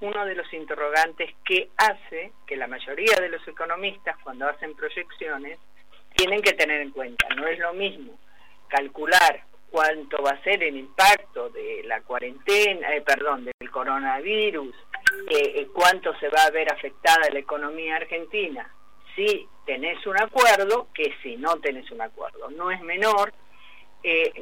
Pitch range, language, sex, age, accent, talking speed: 150-245 Hz, Spanish, female, 40-59, Argentinian, 155 wpm